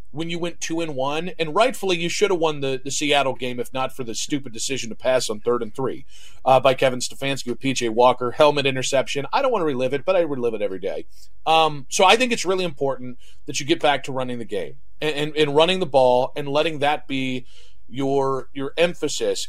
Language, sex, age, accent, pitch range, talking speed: English, male, 40-59, American, 135-170 Hz, 235 wpm